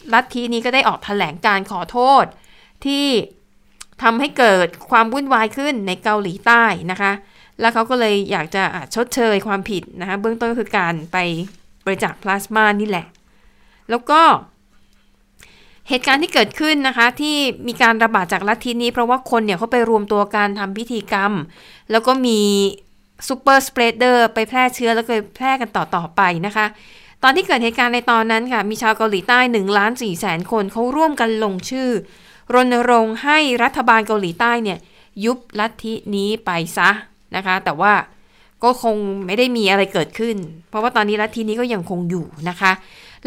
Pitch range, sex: 200-245 Hz, female